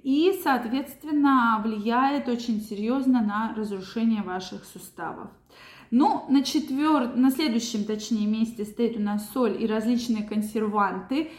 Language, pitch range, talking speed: Russian, 215-255 Hz, 115 wpm